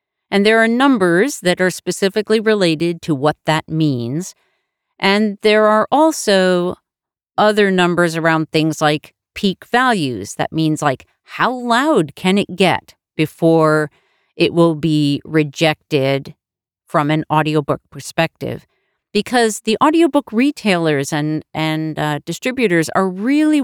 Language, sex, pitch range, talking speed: English, female, 155-210 Hz, 125 wpm